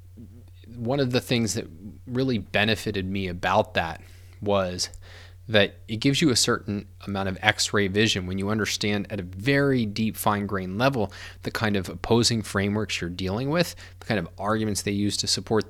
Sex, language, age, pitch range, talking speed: male, English, 20-39, 90-110 Hz, 175 wpm